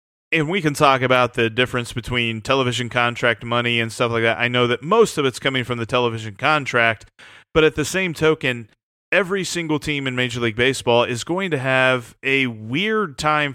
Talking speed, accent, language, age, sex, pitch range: 200 wpm, American, English, 30-49, male, 120-155 Hz